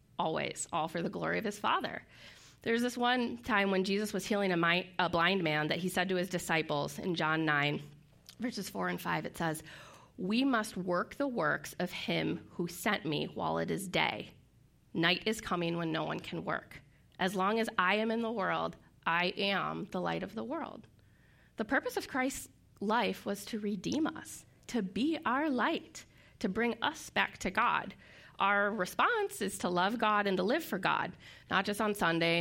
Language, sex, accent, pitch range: English, female, American, 160-210 Hz